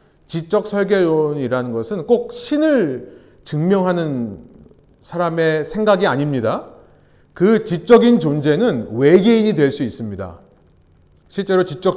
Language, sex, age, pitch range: Korean, male, 40-59, 145-220 Hz